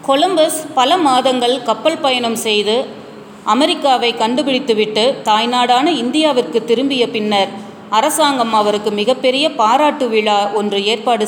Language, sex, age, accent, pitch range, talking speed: Tamil, female, 30-49, native, 215-275 Hz, 100 wpm